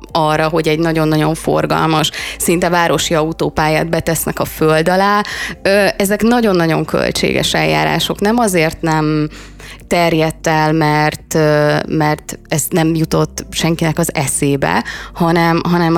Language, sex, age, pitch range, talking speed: Hungarian, female, 20-39, 155-180 Hz, 115 wpm